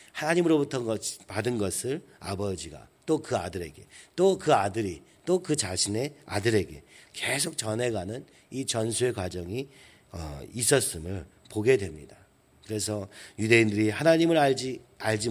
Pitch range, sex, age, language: 100-145 Hz, male, 40-59, Korean